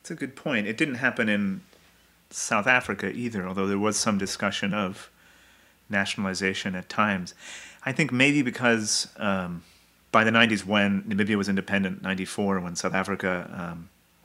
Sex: male